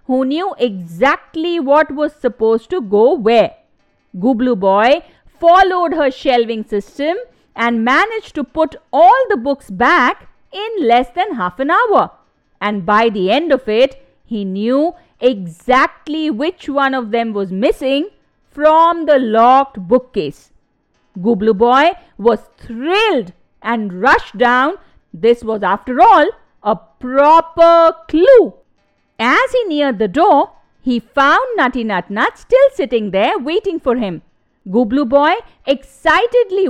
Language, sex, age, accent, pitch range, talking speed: English, female, 50-69, Indian, 230-330 Hz, 130 wpm